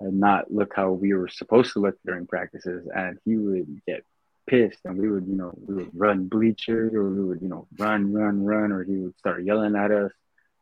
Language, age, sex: Filipino, 20-39, male